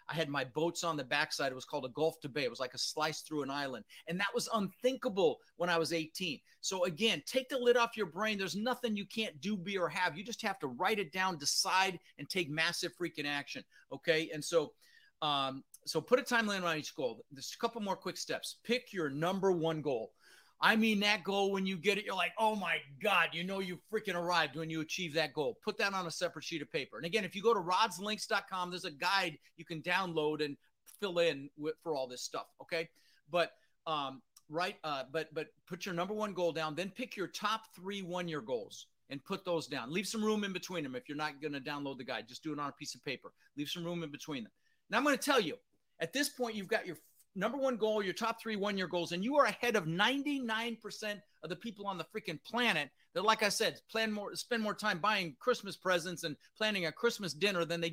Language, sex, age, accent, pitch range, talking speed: English, male, 40-59, American, 160-215 Hz, 245 wpm